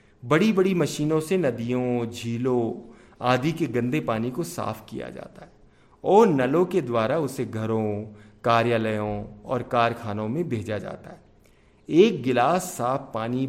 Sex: male